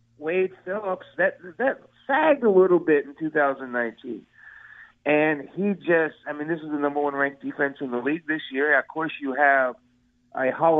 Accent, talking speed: American, 185 wpm